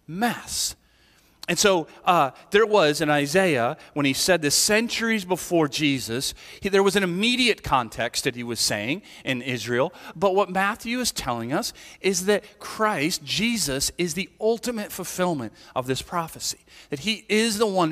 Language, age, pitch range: English, 40-59, 135-180 Hz